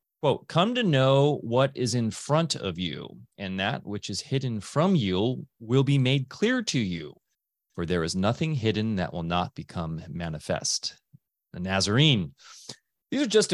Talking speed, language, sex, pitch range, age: 170 wpm, English, male, 95-140 Hz, 30-49